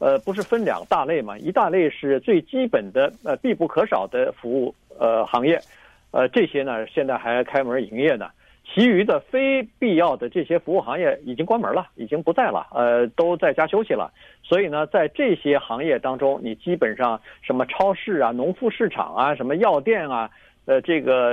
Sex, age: male, 50-69